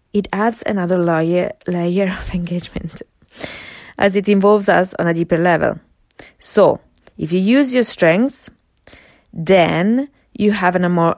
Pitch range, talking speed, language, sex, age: 170-210 Hz, 140 wpm, English, female, 20-39